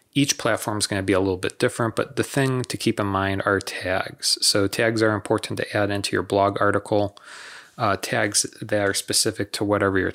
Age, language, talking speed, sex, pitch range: 30-49, English, 220 wpm, male, 100-110 Hz